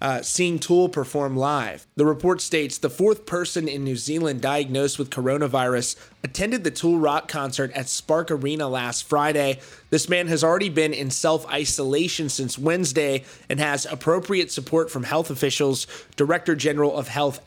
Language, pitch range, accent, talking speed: English, 140-165 Hz, American, 160 wpm